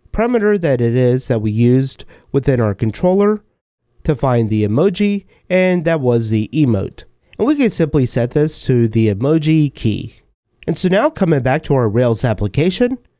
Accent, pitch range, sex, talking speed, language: American, 115-180 Hz, male, 175 wpm, English